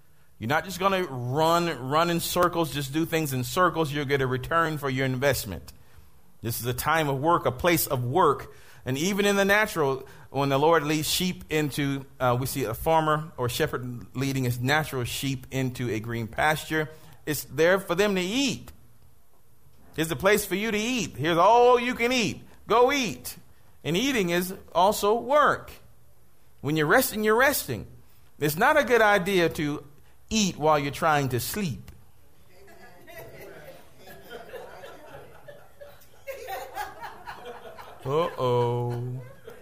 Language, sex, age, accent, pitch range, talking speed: English, male, 40-59, American, 125-175 Hz, 150 wpm